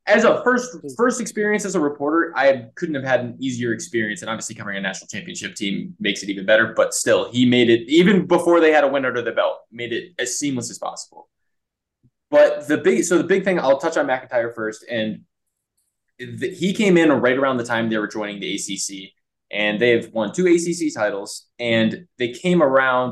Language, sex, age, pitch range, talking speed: English, male, 20-39, 105-170 Hz, 215 wpm